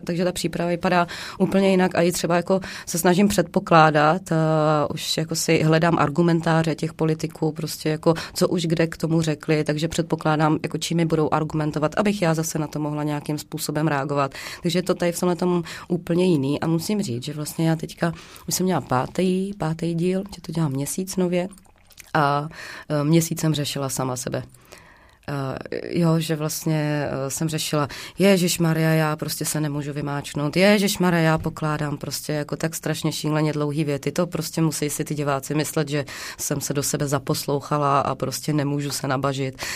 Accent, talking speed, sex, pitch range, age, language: native, 180 wpm, female, 150-180 Hz, 20-39, Czech